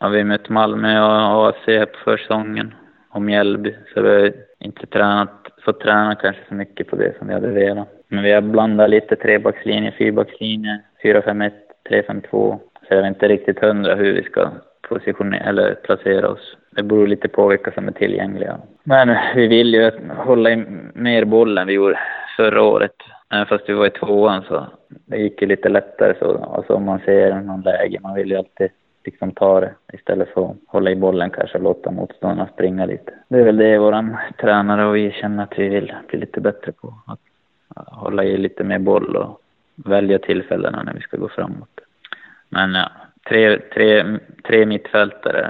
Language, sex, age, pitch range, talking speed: Swedish, male, 20-39, 100-110 Hz, 195 wpm